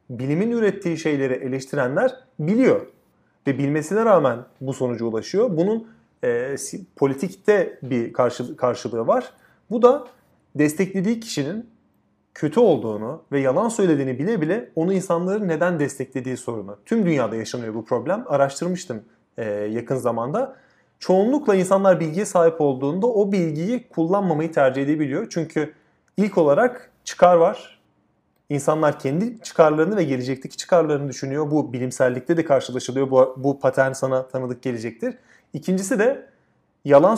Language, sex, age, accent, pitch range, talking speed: Turkish, male, 30-49, native, 130-195 Hz, 120 wpm